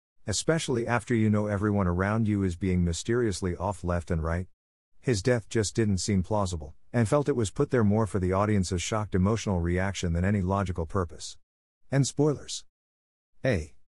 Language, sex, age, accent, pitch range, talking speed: English, male, 50-69, American, 90-115 Hz, 170 wpm